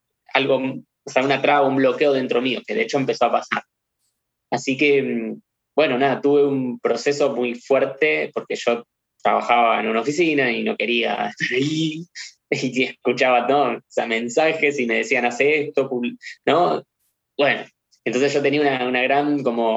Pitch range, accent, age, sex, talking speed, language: 120-145 Hz, Argentinian, 20-39, male, 165 wpm, Spanish